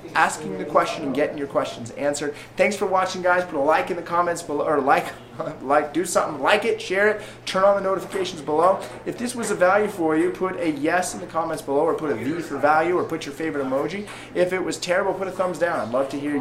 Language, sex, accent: English, male, American